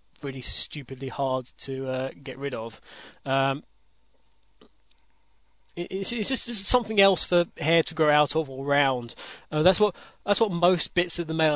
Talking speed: 175 wpm